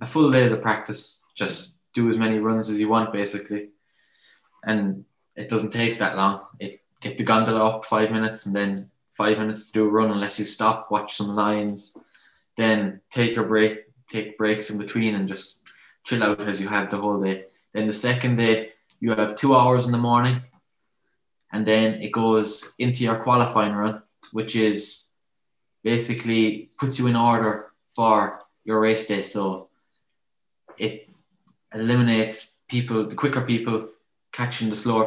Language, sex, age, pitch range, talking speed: English, male, 20-39, 105-115 Hz, 170 wpm